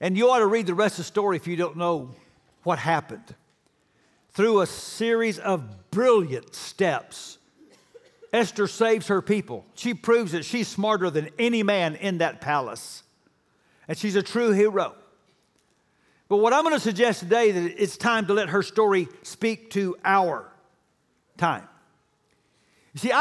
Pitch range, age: 175-230 Hz, 60-79